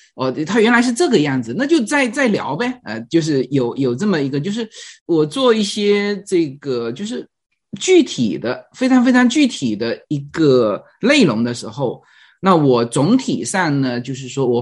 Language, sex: Chinese, male